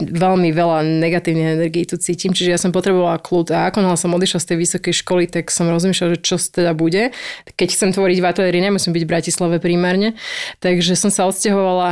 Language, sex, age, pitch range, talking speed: Slovak, female, 20-39, 170-185 Hz, 190 wpm